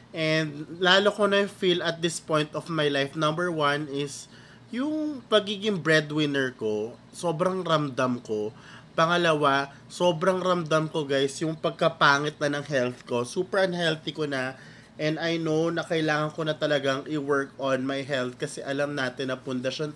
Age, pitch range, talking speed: 20-39, 135-170 Hz, 160 wpm